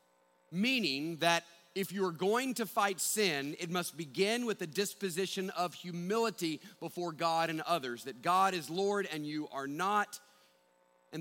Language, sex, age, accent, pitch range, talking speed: English, male, 40-59, American, 165-225 Hz, 160 wpm